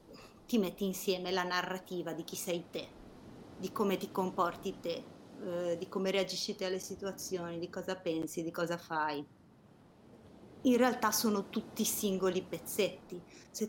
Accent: native